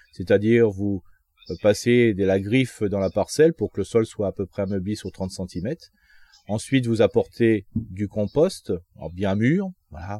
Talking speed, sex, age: 170 wpm, male, 30-49